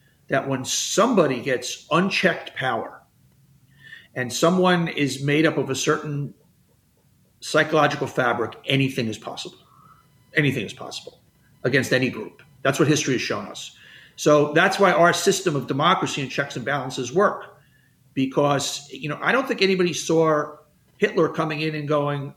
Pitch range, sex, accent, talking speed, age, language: 130-170 Hz, male, American, 150 wpm, 50-69, English